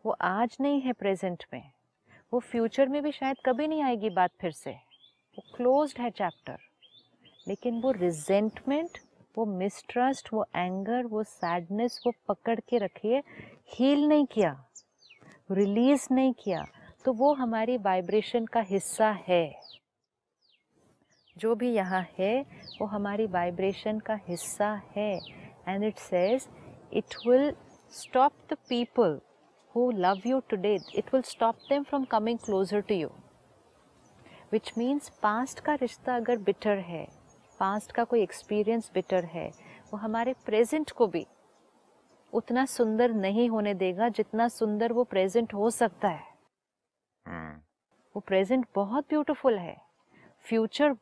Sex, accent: female, native